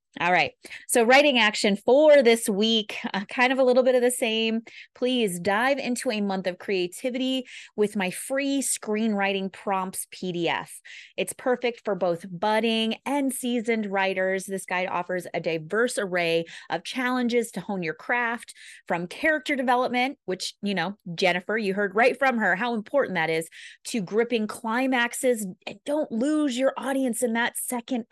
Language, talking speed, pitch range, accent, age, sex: English, 160 wpm, 195-255 Hz, American, 30-49, female